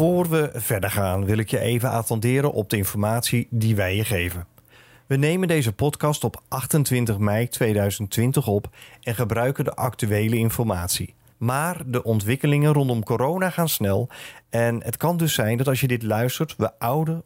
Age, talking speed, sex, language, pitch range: 40-59, 170 wpm, male, Dutch, 105-150 Hz